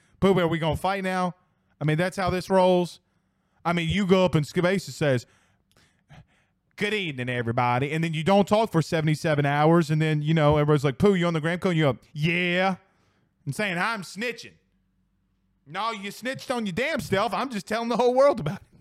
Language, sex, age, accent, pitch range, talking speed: English, male, 20-39, American, 120-185 Hz, 205 wpm